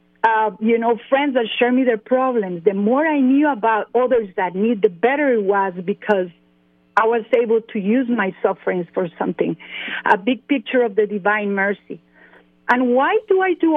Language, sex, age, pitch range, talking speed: English, female, 50-69, 200-255 Hz, 185 wpm